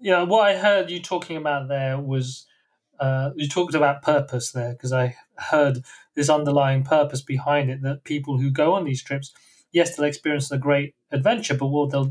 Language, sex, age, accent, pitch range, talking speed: English, male, 30-49, British, 140-170 Hz, 200 wpm